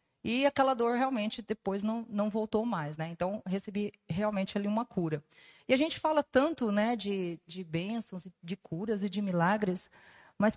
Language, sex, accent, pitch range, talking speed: Portuguese, female, Brazilian, 190-240 Hz, 175 wpm